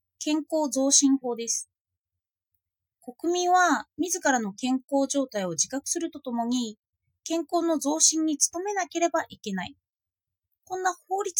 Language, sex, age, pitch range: Japanese, female, 20-39, 205-330 Hz